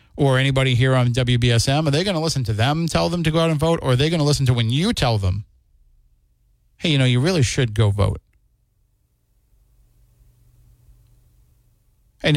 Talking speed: 190 wpm